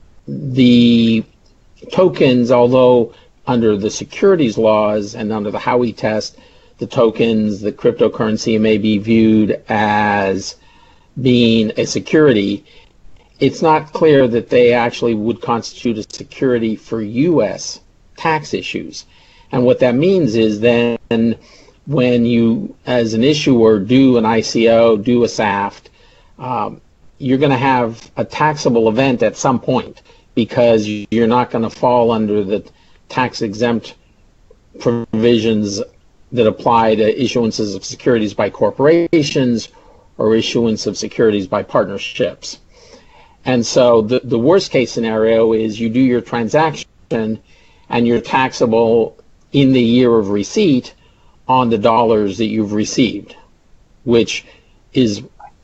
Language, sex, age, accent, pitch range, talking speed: English, male, 50-69, American, 110-125 Hz, 125 wpm